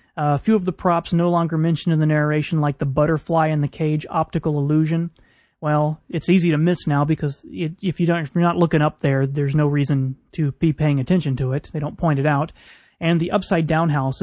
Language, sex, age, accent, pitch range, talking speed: English, male, 30-49, American, 145-170 Hz, 230 wpm